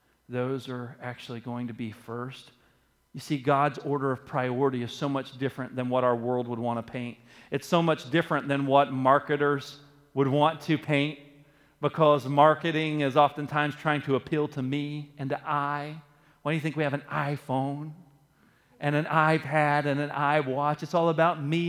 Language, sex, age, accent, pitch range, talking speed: English, male, 40-59, American, 135-170 Hz, 185 wpm